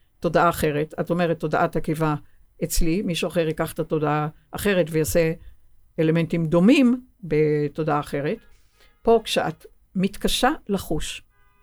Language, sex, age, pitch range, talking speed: Hebrew, female, 60-79, 155-205 Hz, 115 wpm